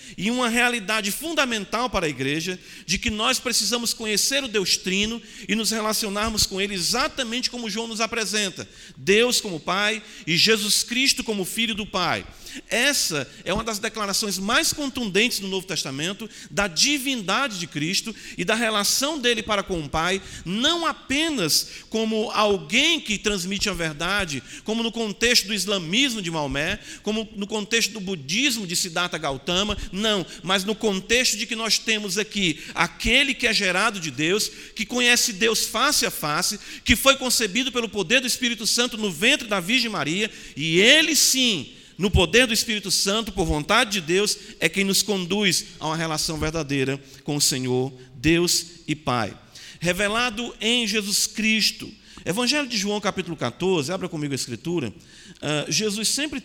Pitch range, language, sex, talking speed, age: 160-225 Hz, Portuguese, male, 165 wpm, 50-69